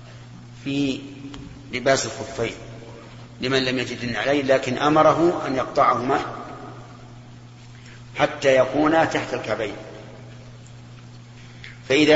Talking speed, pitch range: 80 wpm, 120-140 Hz